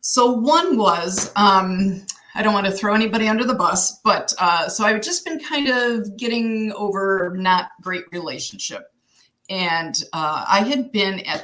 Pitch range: 180-225 Hz